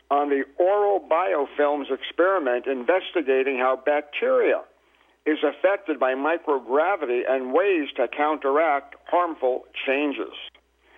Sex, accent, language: male, American, English